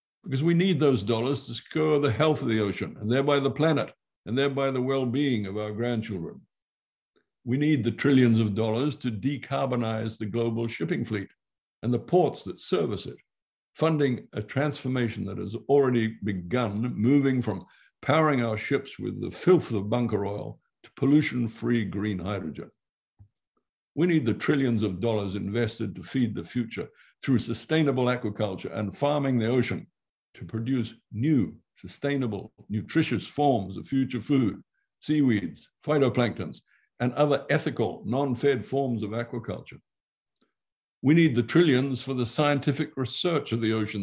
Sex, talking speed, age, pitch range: male, 150 wpm, 60-79, 110-140 Hz